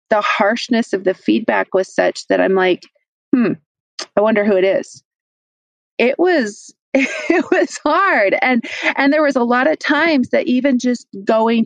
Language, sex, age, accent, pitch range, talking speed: English, female, 40-59, American, 195-280 Hz, 170 wpm